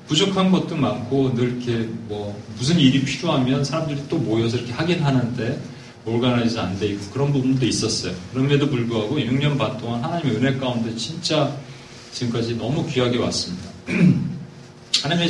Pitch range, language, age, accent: 110-135 Hz, Korean, 40-59, native